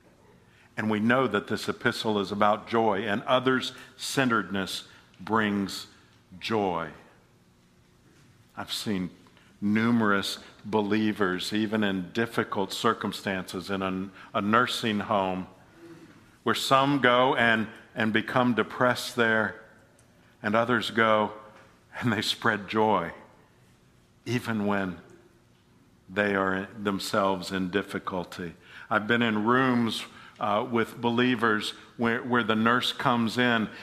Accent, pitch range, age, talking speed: American, 95-115 Hz, 50-69, 110 wpm